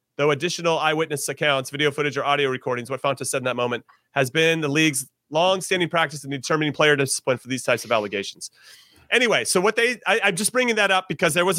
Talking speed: 210 wpm